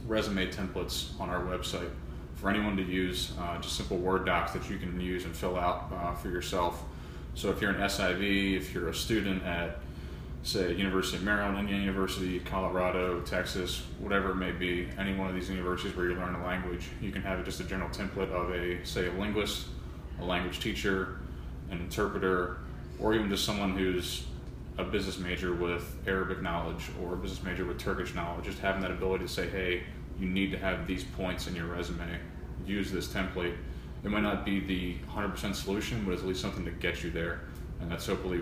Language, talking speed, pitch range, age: English, 200 wpm, 85-95 Hz, 20-39